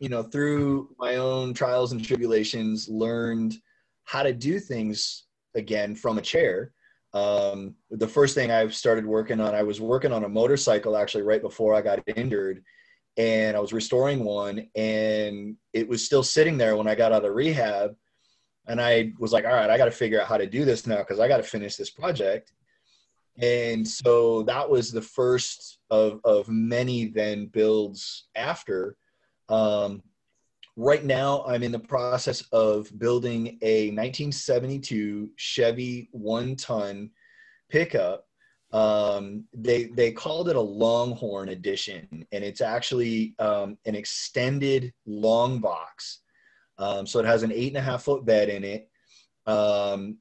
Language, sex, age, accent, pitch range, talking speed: English, male, 20-39, American, 105-125 Hz, 160 wpm